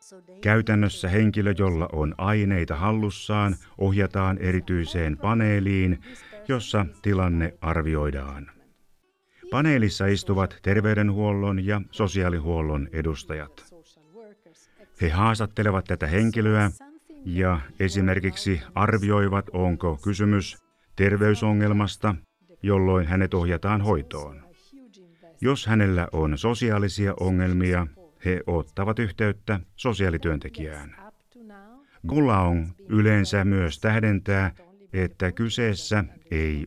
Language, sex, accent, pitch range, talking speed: Finnish, male, native, 90-110 Hz, 80 wpm